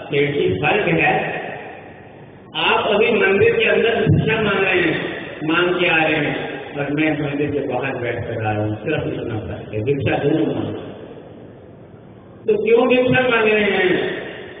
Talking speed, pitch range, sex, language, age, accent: 150 wpm, 145-205 Hz, male, Hindi, 50-69, native